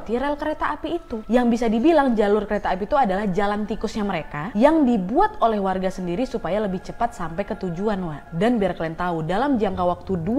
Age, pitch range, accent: 20-39, 200-280 Hz, native